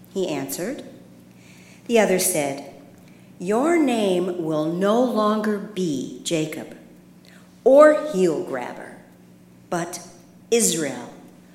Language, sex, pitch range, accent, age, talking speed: English, female, 150-235 Hz, American, 50-69, 90 wpm